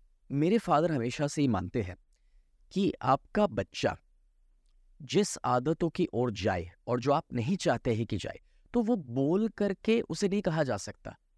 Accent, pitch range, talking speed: native, 120-175 Hz, 170 wpm